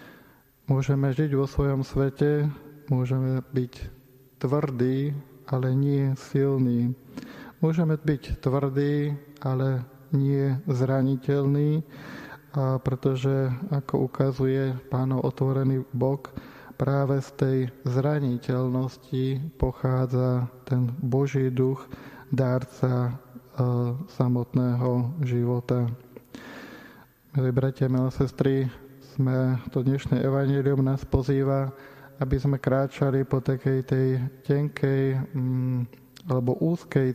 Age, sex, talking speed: 20-39, male, 85 wpm